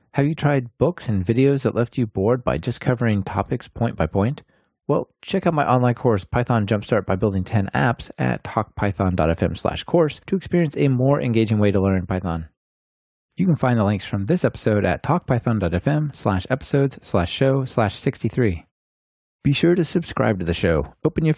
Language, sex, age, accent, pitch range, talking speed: English, male, 30-49, American, 95-135 Hz, 190 wpm